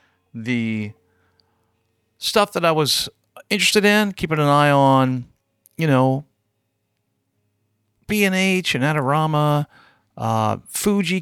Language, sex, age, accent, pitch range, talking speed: English, male, 40-59, American, 110-155 Hz, 95 wpm